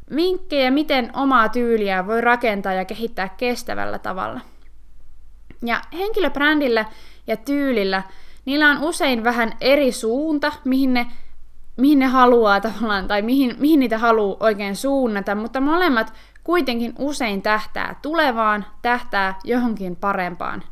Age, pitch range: 20-39, 200-280 Hz